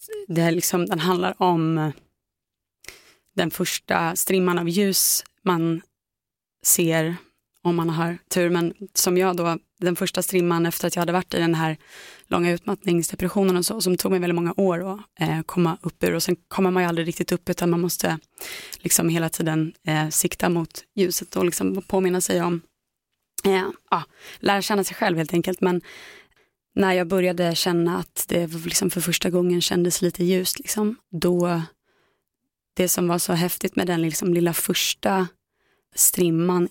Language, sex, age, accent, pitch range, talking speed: Swedish, female, 20-39, native, 170-185 Hz, 160 wpm